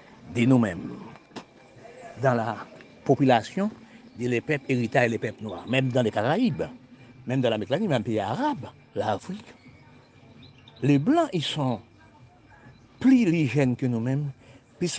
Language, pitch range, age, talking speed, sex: French, 120-155 Hz, 60-79, 135 wpm, male